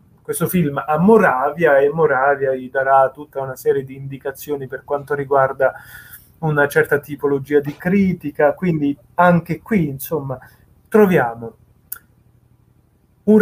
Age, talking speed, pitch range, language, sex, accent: 30-49, 120 wpm, 135-185 Hz, Italian, male, native